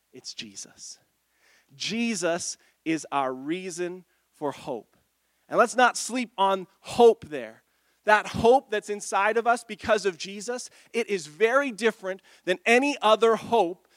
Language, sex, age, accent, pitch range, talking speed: English, male, 40-59, American, 190-235 Hz, 135 wpm